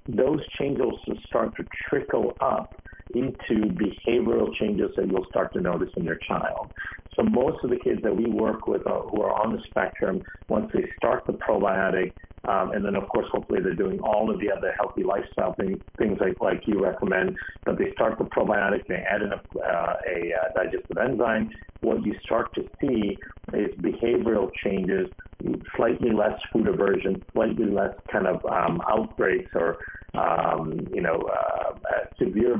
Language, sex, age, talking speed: English, male, 50-69, 180 wpm